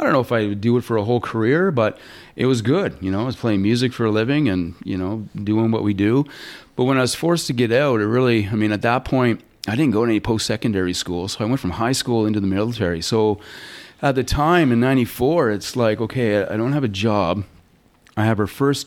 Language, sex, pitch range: English, male, 100-120 Hz